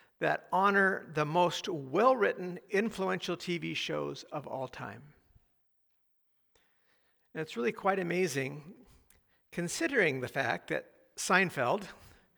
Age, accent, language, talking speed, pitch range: 50-69, American, English, 100 wpm, 150-195 Hz